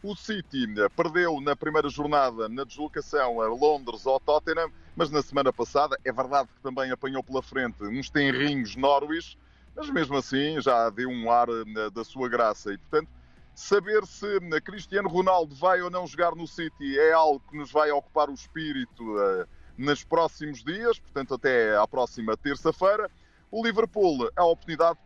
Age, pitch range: 30-49, 130-170 Hz